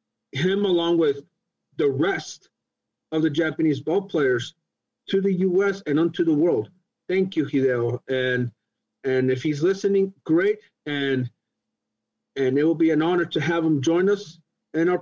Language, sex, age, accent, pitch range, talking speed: English, male, 40-59, American, 140-200 Hz, 160 wpm